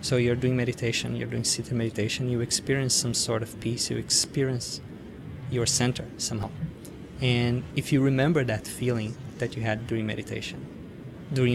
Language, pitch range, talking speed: English, 115-130 Hz, 160 wpm